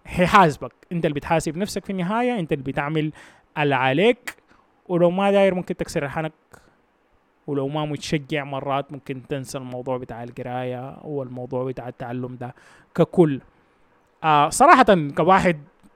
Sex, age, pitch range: male, 20-39, 145-180 Hz